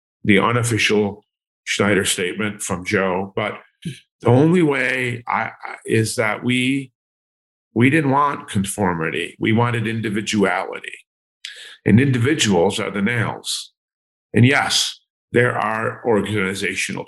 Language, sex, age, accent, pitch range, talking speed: English, male, 50-69, American, 105-130 Hz, 105 wpm